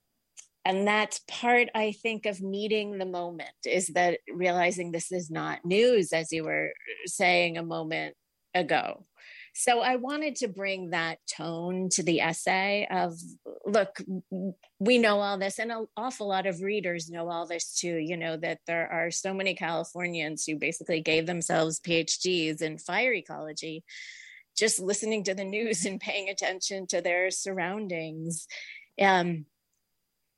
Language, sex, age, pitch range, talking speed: English, female, 30-49, 165-210 Hz, 150 wpm